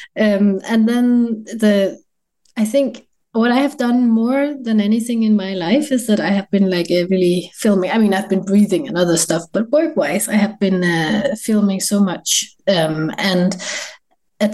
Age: 30-49